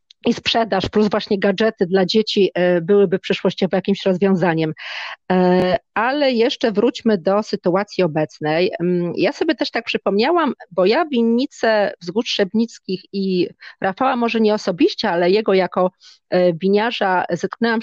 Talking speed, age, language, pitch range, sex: 125 wpm, 30-49, Polish, 185-220 Hz, female